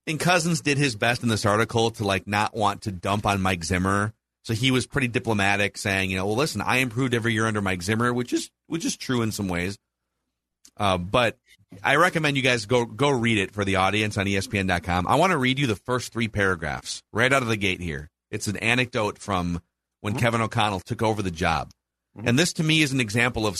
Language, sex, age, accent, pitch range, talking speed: English, male, 40-59, American, 95-130 Hz, 230 wpm